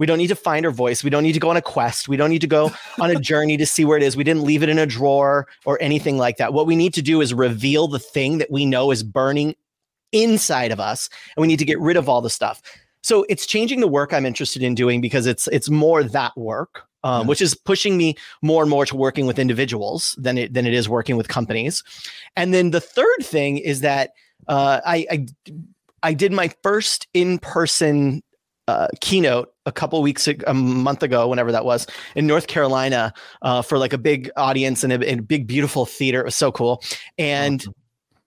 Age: 30-49